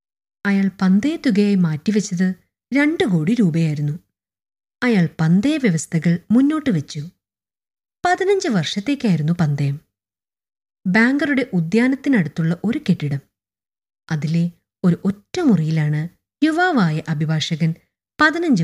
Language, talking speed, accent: Malayalam, 75 wpm, native